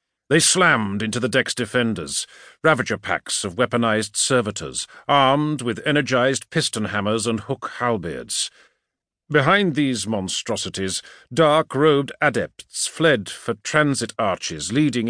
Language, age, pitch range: English, 50-69, 115-155 Hz